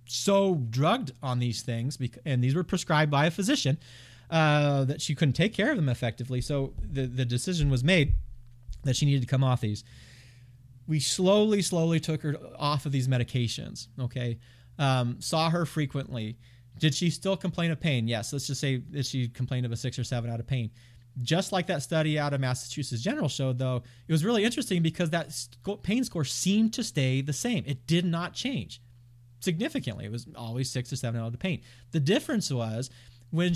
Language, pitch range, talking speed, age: English, 125-180 Hz, 200 wpm, 30-49